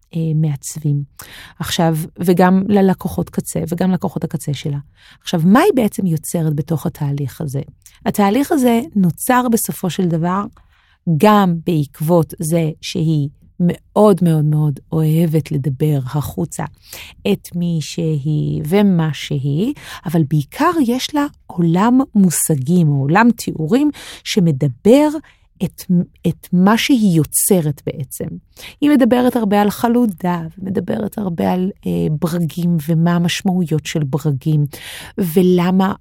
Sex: female